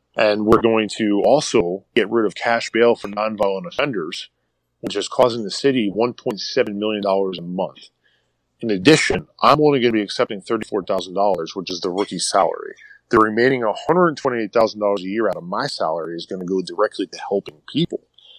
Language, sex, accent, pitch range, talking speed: English, male, American, 100-130 Hz, 175 wpm